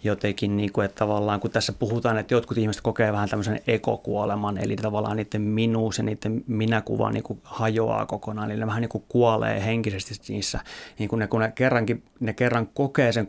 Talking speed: 190 wpm